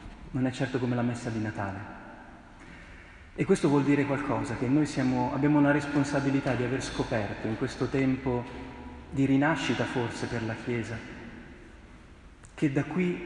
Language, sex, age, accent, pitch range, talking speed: Italian, male, 30-49, native, 110-140 Hz, 150 wpm